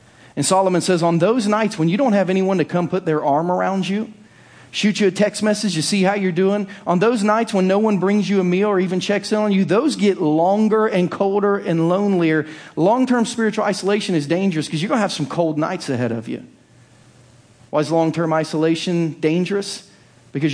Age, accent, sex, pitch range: 40-59, American, male, 135-185 Hz